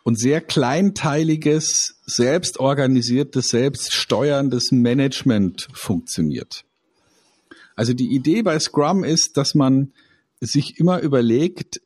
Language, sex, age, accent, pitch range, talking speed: German, male, 50-69, German, 115-155 Hz, 90 wpm